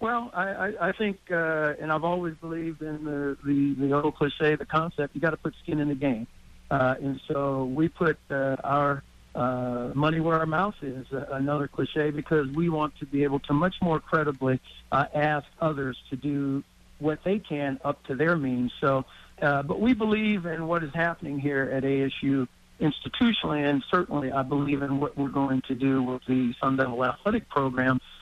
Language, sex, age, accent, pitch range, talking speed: English, male, 60-79, American, 135-160 Hz, 195 wpm